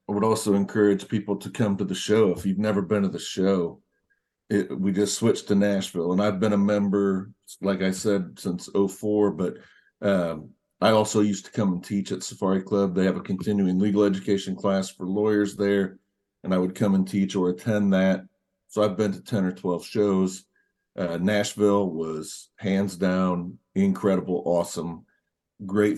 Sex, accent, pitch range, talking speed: male, American, 95-105 Hz, 185 wpm